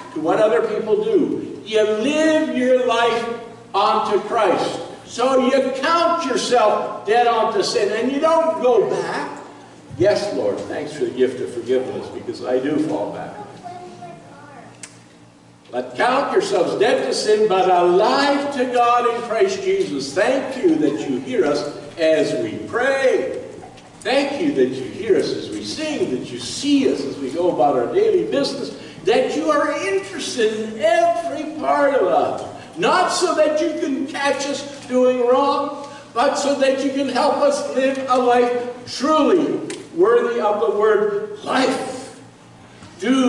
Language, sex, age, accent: English, male, 60-79, American